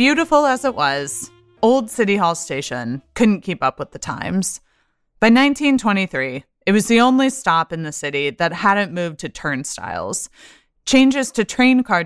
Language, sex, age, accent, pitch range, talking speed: English, female, 20-39, American, 165-235 Hz, 165 wpm